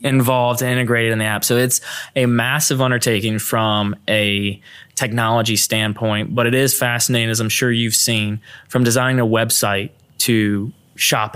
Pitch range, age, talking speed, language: 110-130 Hz, 20-39, 160 wpm, English